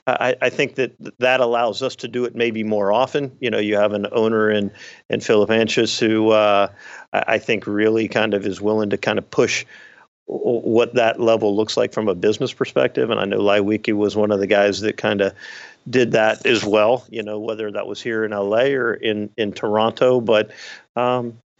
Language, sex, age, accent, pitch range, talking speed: English, male, 50-69, American, 100-115 Hz, 210 wpm